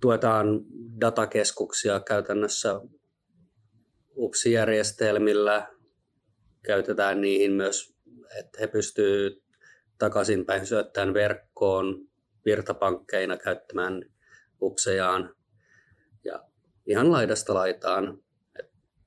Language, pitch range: Finnish, 100-115 Hz